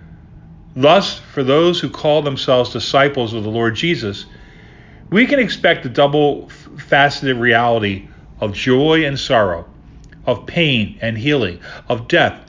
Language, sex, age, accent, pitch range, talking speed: English, male, 40-59, American, 120-155 Hz, 130 wpm